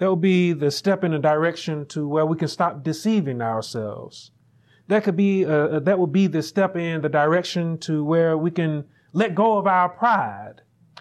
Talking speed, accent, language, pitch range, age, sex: 195 wpm, American, English, 155-200 Hz, 30-49, male